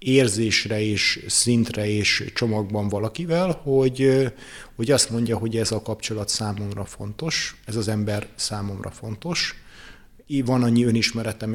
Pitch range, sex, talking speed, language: 110-130 Hz, male, 125 wpm, Hungarian